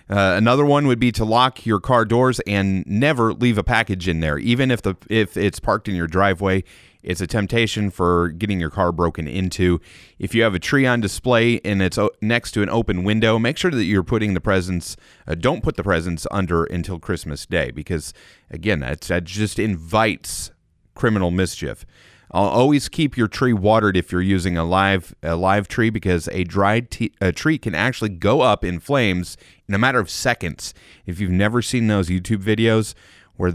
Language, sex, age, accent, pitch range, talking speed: English, male, 30-49, American, 90-115 Hz, 200 wpm